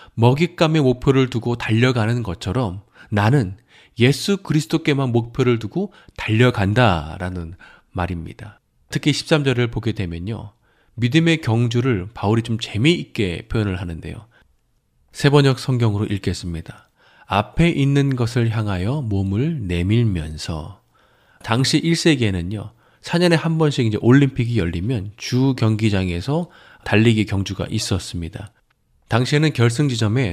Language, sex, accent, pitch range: Korean, male, native, 100-140 Hz